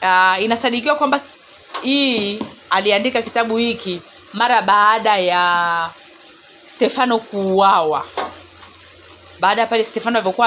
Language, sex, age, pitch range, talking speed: Swahili, female, 40-59, 185-240 Hz, 90 wpm